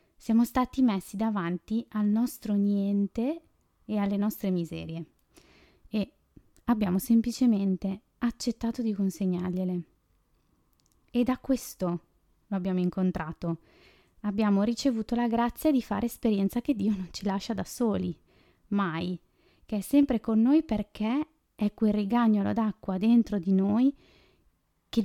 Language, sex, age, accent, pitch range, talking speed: Italian, female, 20-39, native, 195-235 Hz, 125 wpm